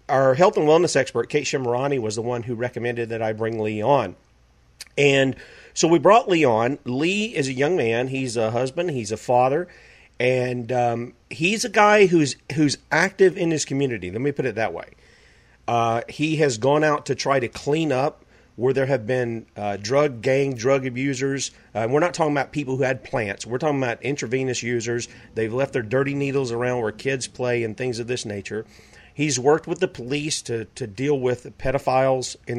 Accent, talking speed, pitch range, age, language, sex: American, 205 wpm, 115-145 Hz, 40-59, English, male